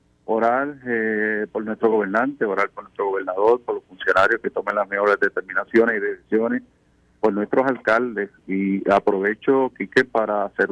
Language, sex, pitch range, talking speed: Spanish, male, 100-125 Hz, 150 wpm